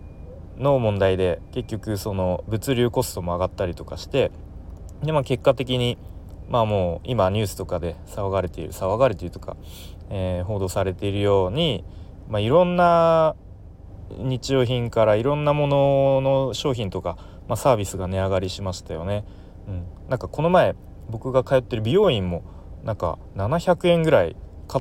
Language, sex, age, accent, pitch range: Japanese, male, 30-49, native, 85-125 Hz